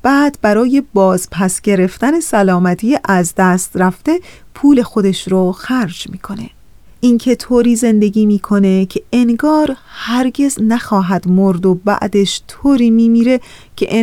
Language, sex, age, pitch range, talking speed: Persian, female, 30-49, 195-245 Hz, 125 wpm